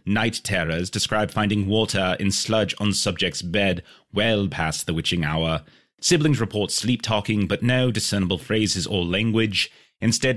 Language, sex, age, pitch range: English, male, 30-49, 95-120 Hz